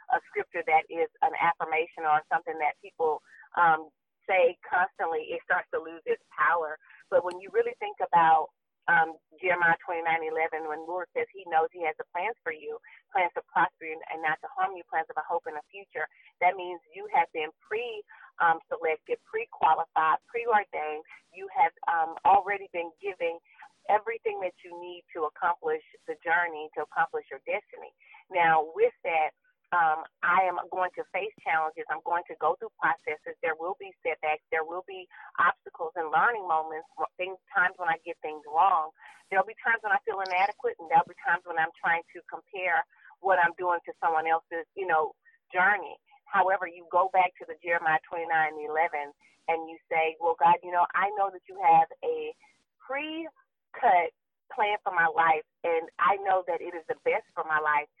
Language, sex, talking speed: English, female, 190 wpm